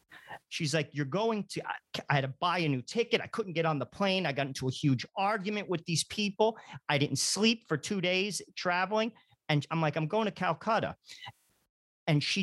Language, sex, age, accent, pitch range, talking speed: English, male, 40-59, American, 140-205 Hz, 210 wpm